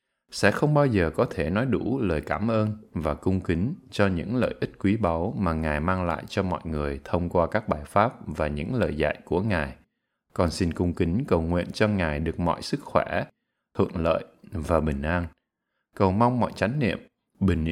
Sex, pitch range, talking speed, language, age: male, 80-105 Hz, 205 wpm, Vietnamese, 20-39